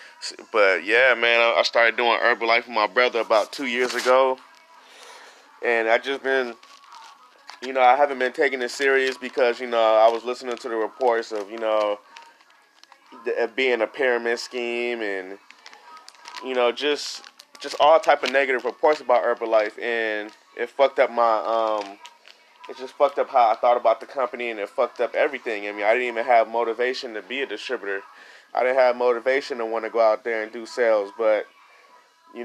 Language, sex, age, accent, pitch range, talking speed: English, male, 20-39, American, 115-130 Hz, 190 wpm